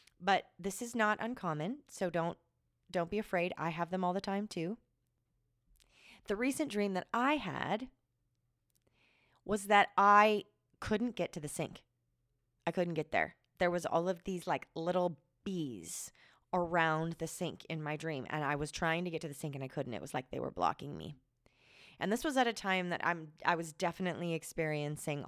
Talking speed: 190 wpm